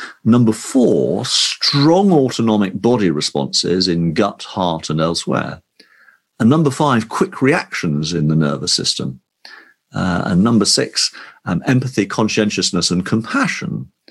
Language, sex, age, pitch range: English, male, 50-69, 90-130 Hz